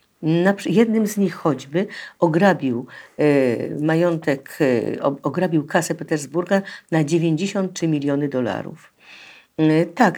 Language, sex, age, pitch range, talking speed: Polish, female, 50-69, 145-190 Hz, 85 wpm